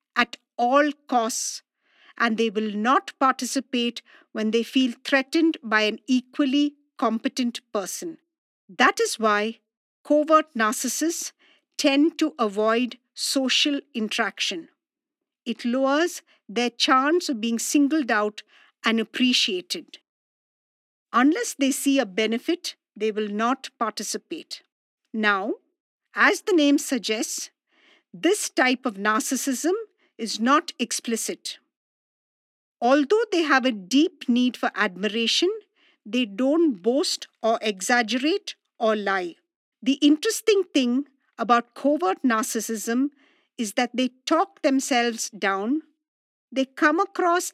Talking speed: 110 wpm